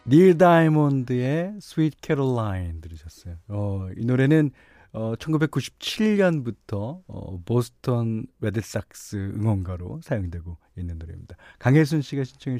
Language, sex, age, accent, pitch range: Korean, male, 40-59, native, 105-150 Hz